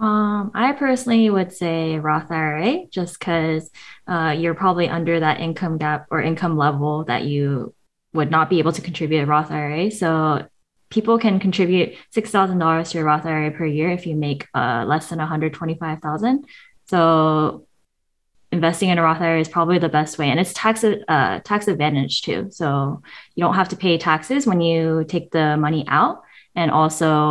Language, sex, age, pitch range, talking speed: English, female, 20-39, 150-185 Hz, 180 wpm